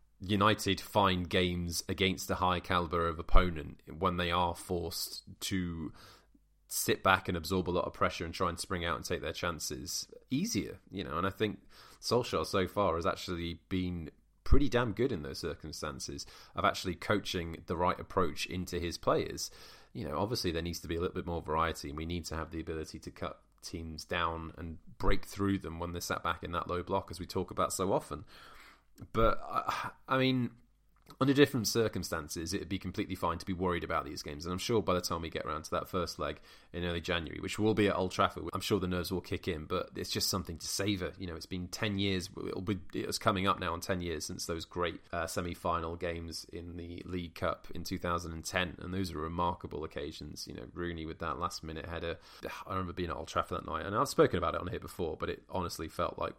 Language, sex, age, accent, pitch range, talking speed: English, male, 20-39, British, 85-95 Hz, 225 wpm